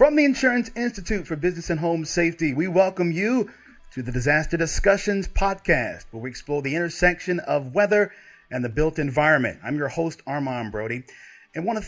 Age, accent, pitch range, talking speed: 30-49, American, 130-195 Hz, 180 wpm